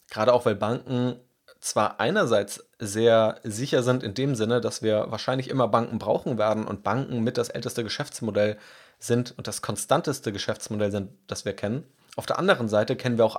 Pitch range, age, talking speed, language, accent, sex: 110-130 Hz, 30-49, 185 wpm, German, German, male